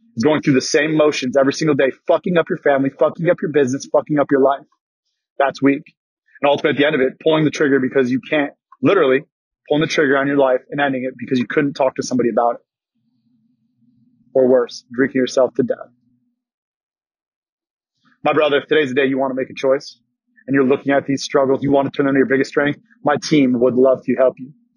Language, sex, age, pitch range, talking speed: English, male, 30-49, 135-155 Hz, 225 wpm